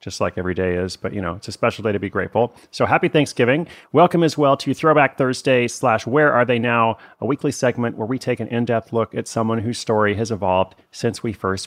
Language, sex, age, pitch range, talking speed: English, male, 30-49, 105-135 Hz, 240 wpm